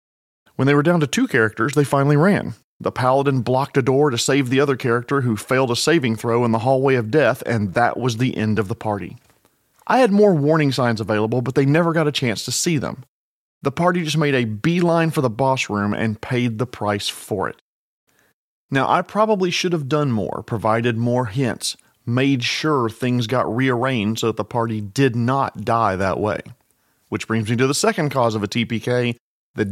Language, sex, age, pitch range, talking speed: English, male, 40-59, 115-145 Hz, 210 wpm